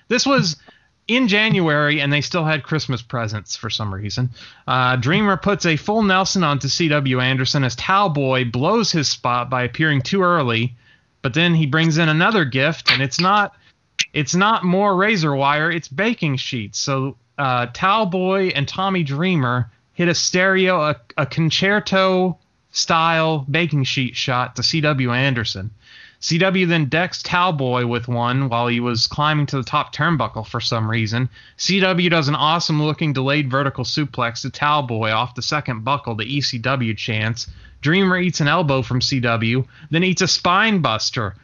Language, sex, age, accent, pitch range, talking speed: English, male, 30-49, American, 125-175 Hz, 160 wpm